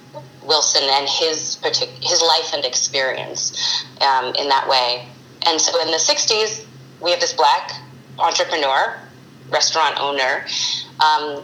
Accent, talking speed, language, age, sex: American, 130 wpm, English, 30-49, female